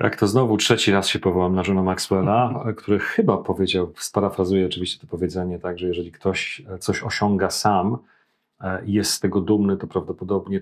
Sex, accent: male, native